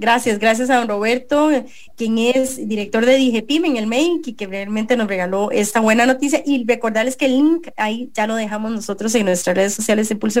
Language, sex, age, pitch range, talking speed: English, female, 30-49, 220-280 Hz, 215 wpm